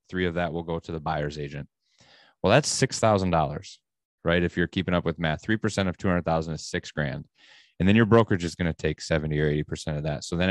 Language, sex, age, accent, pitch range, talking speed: English, male, 30-49, American, 85-105 Hz, 230 wpm